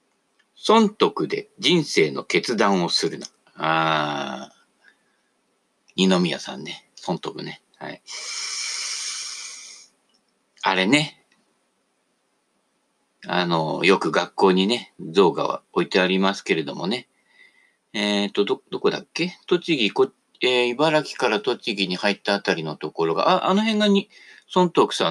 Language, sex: Japanese, male